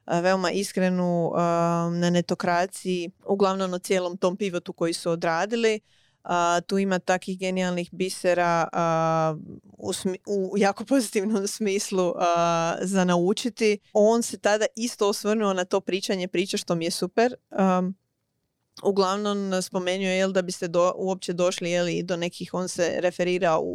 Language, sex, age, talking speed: Croatian, female, 20-39, 145 wpm